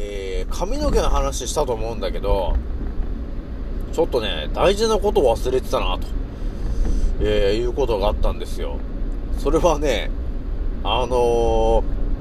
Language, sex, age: Japanese, male, 40-59